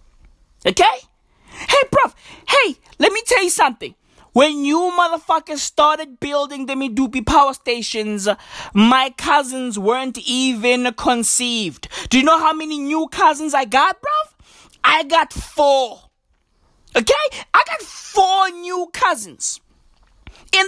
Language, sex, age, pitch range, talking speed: English, male, 20-39, 260-340 Hz, 125 wpm